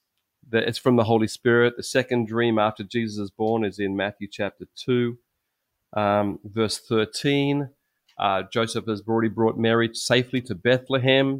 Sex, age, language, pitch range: male, 30-49, Japanese, 110-135 Hz